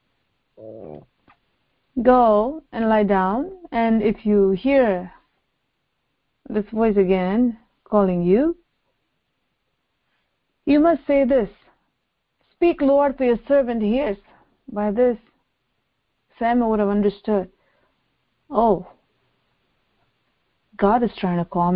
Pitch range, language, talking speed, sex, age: 185-235 Hz, English, 95 wpm, female, 30-49